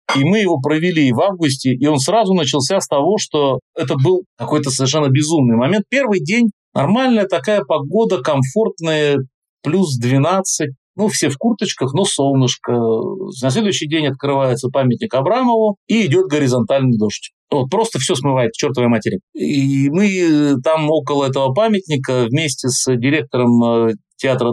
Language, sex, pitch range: Russian, male, 125-180 Hz